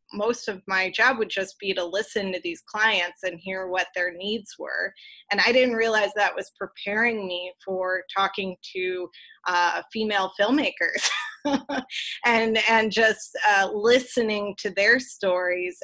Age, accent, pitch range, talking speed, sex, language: 20-39, American, 185-220 Hz, 150 wpm, female, English